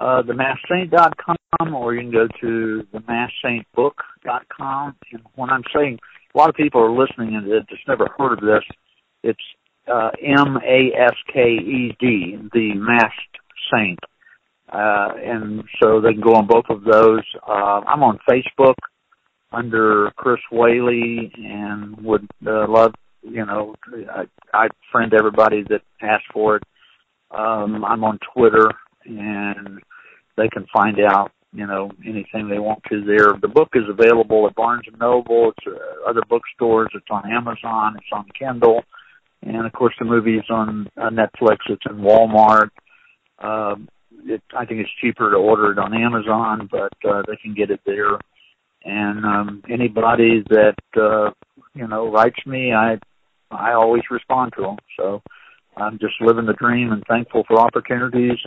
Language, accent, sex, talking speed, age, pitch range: English, American, male, 160 wpm, 50-69, 105-120 Hz